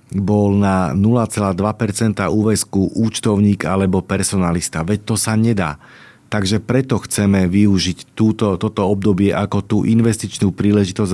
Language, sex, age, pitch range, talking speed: Slovak, male, 40-59, 100-110 Hz, 120 wpm